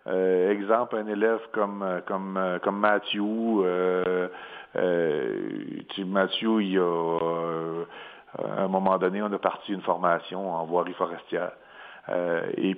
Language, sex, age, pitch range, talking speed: French, male, 50-69, 95-120 Hz, 140 wpm